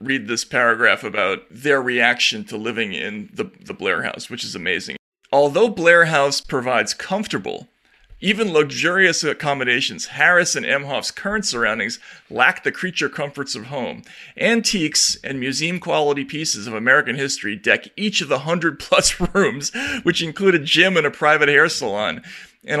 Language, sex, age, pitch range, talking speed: English, male, 40-59, 140-185 Hz, 160 wpm